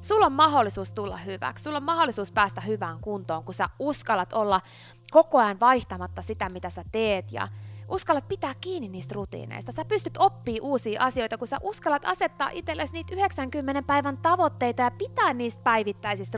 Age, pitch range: 20-39, 180-290 Hz